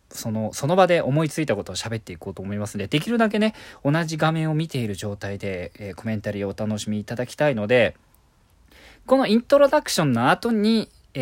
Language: Japanese